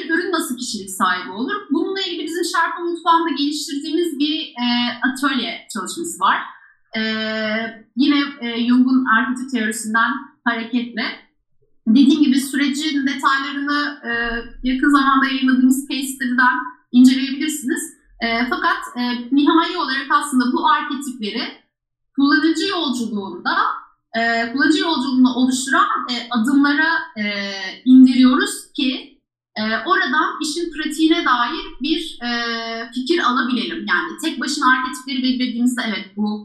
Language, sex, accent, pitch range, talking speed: Turkish, female, native, 230-295 Hz, 95 wpm